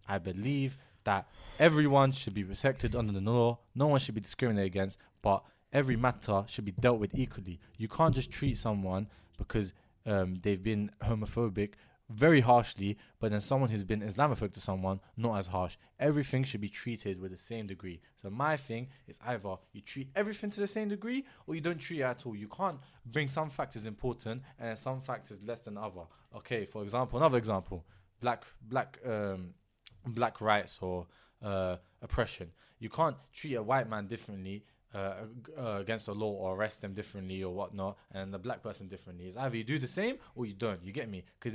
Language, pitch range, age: English, 100-135 Hz, 20-39